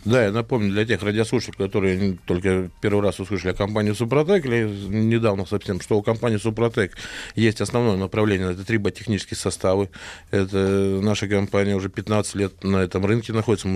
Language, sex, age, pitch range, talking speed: Russian, male, 20-39, 95-115 Hz, 165 wpm